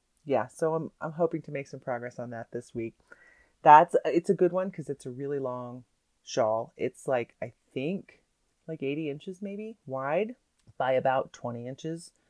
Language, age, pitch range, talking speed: English, 30-49, 125-165 Hz, 180 wpm